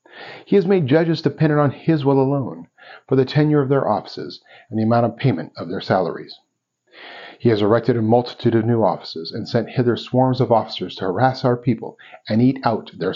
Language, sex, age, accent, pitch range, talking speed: English, male, 40-59, American, 110-135 Hz, 205 wpm